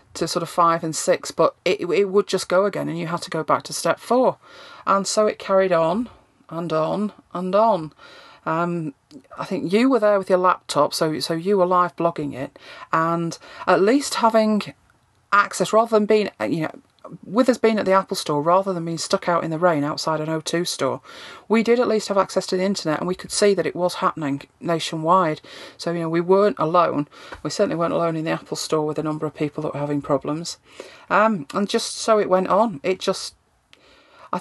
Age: 40-59